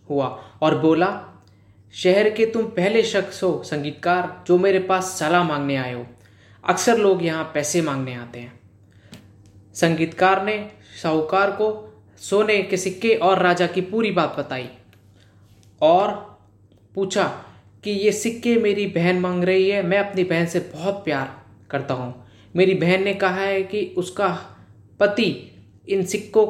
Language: Hindi